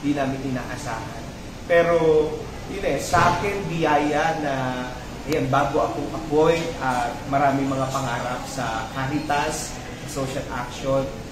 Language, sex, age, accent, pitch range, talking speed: Filipino, male, 30-49, native, 135-170 Hz, 115 wpm